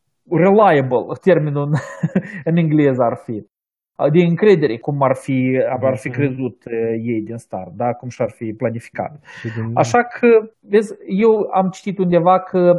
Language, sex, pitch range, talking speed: Romanian, male, 135-185 Hz, 140 wpm